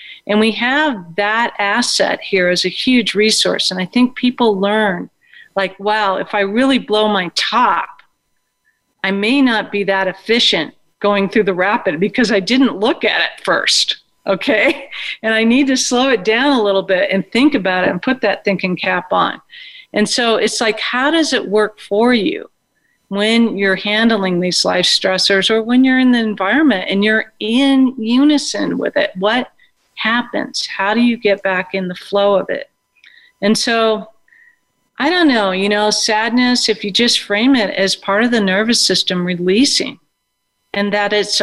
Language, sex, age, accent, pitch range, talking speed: English, female, 40-59, American, 195-250 Hz, 180 wpm